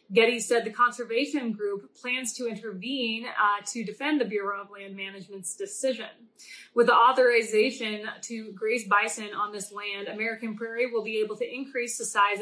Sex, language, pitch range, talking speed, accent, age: female, English, 210-255 Hz, 170 wpm, American, 20-39